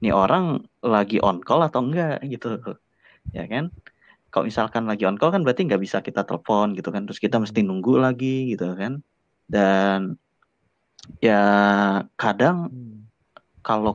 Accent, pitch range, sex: native, 100-115 Hz, male